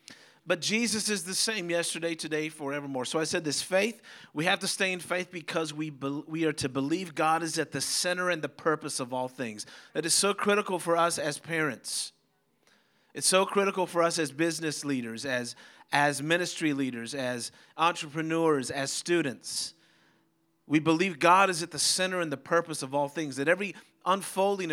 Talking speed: 185 wpm